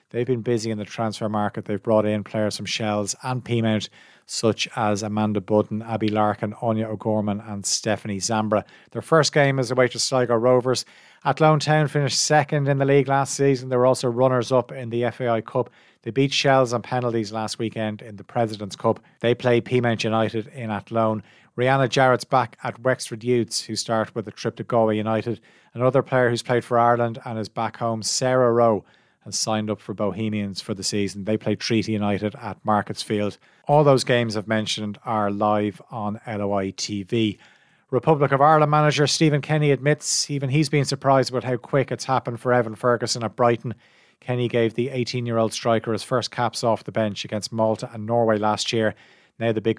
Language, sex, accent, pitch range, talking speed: English, male, Irish, 105-125 Hz, 195 wpm